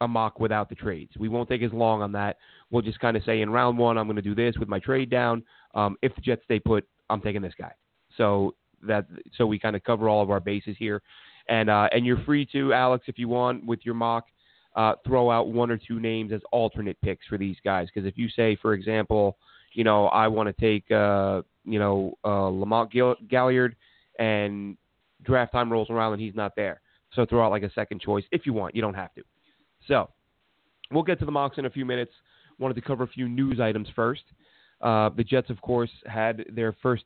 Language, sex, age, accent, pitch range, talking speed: English, male, 30-49, American, 105-120 Hz, 235 wpm